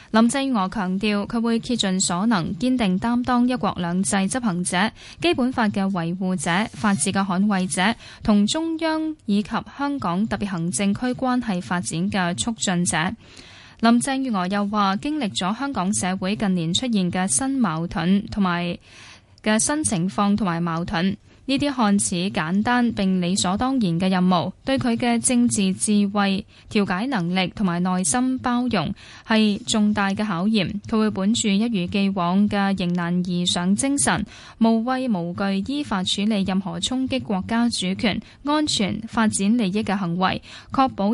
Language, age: Chinese, 10-29